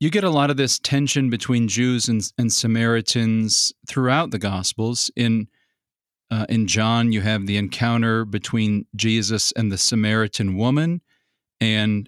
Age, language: 40-59, English